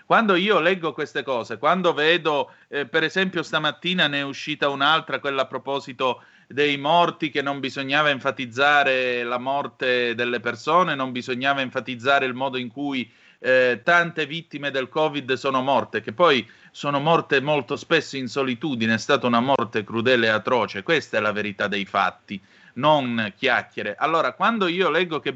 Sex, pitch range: male, 125-160 Hz